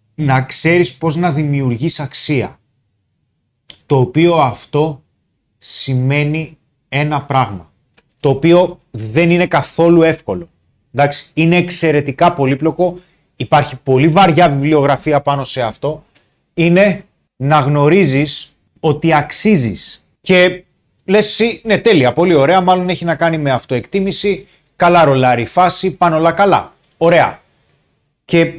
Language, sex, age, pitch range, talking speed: Greek, male, 30-49, 130-170 Hz, 115 wpm